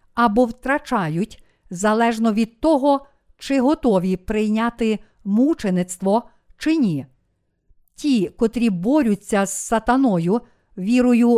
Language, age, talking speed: Ukrainian, 50-69, 90 wpm